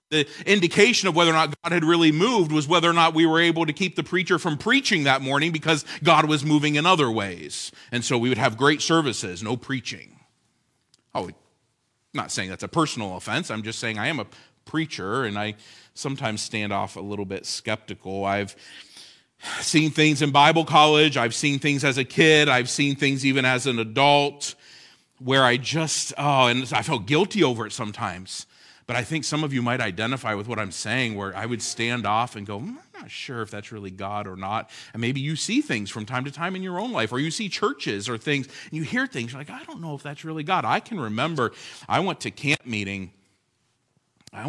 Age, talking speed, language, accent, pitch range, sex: 40-59, 220 wpm, English, American, 110-150 Hz, male